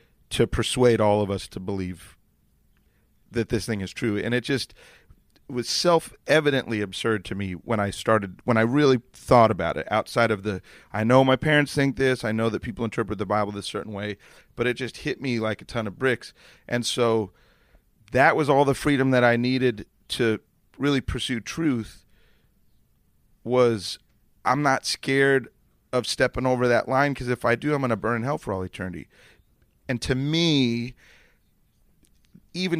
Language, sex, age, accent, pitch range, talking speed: English, male, 30-49, American, 110-135 Hz, 180 wpm